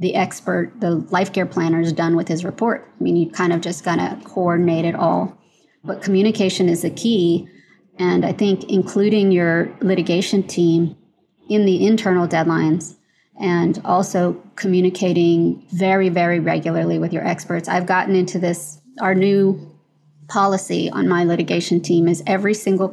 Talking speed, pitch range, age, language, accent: 160 wpm, 175-200 Hz, 30-49, English, American